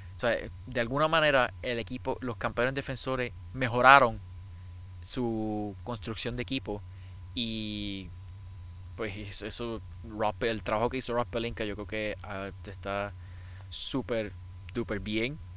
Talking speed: 120 wpm